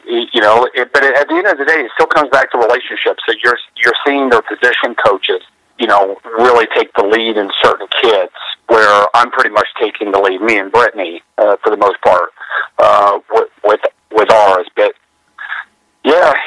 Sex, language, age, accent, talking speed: male, English, 40-59, American, 195 wpm